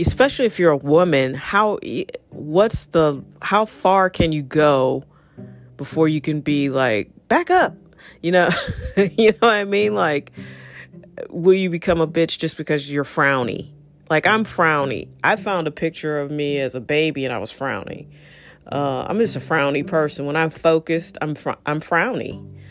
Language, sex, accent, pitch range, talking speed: English, female, American, 140-175 Hz, 175 wpm